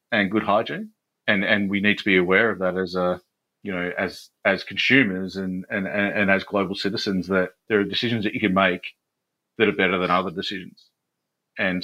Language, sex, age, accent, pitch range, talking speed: English, male, 40-59, Australian, 95-110 Hz, 205 wpm